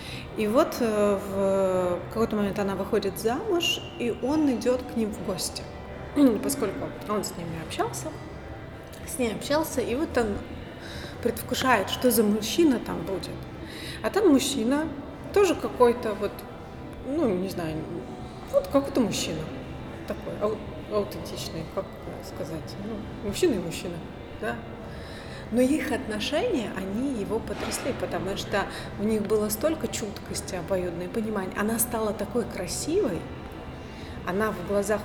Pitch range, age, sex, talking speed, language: 200-250 Hz, 30-49, female, 130 wpm, English